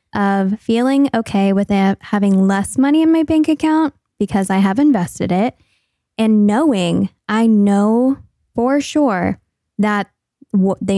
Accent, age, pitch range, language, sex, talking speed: American, 10-29, 190-235 Hz, English, female, 130 wpm